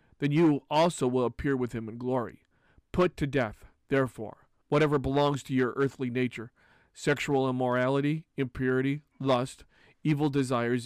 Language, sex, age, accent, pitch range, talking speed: English, male, 40-59, American, 125-150 Hz, 140 wpm